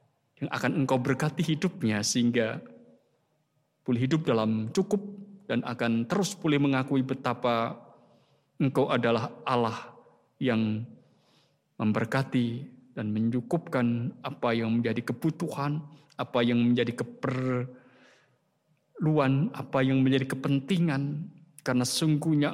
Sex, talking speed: male, 100 wpm